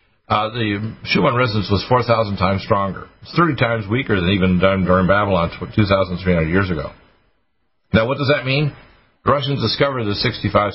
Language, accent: English, American